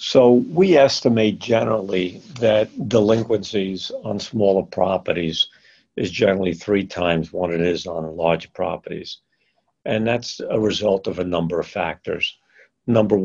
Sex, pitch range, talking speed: male, 90-110 Hz, 130 wpm